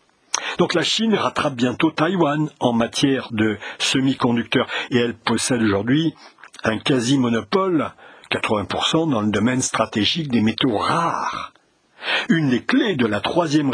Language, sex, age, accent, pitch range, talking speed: French, male, 60-79, French, 110-145 Hz, 130 wpm